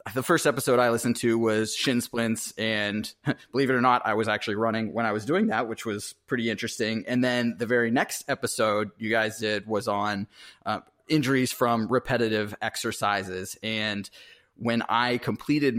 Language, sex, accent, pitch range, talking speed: English, male, American, 110-130 Hz, 180 wpm